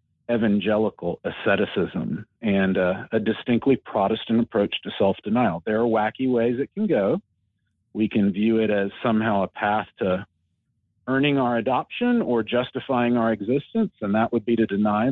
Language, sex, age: English, male, 40-59